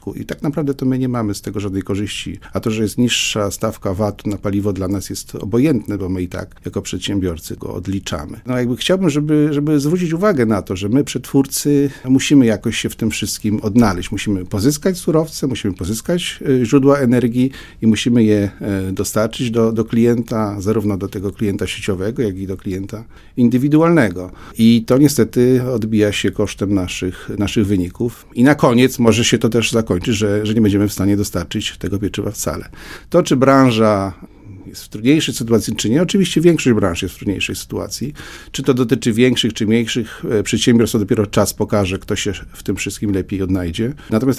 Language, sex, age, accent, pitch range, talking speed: Polish, male, 50-69, native, 100-125 Hz, 185 wpm